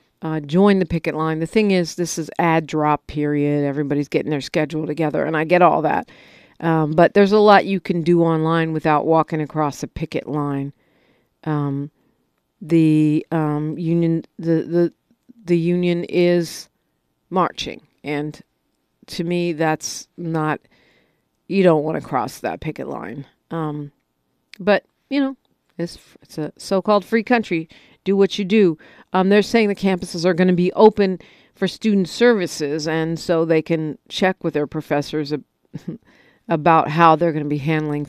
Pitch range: 150-180 Hz